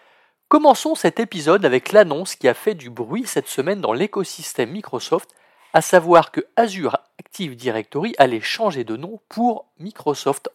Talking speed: 155 wpm